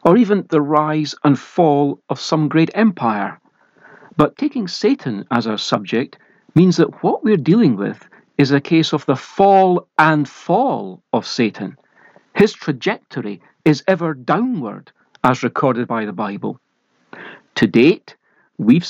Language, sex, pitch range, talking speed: English, male, 140-195 Hz, 145 wpm